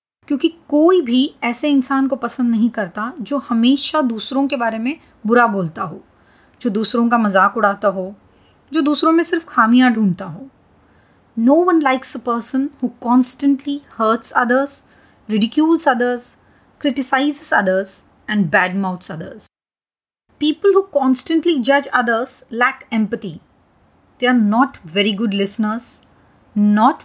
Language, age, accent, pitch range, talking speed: Hindi, 30-49, native, 210-270 Hz, 140 wpm